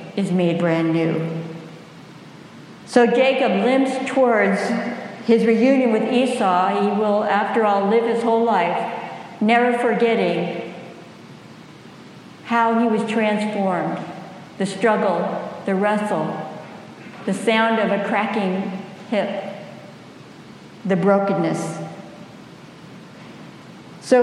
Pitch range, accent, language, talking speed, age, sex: 190-235 Hz, American, English, 95 wpm, 60-79, female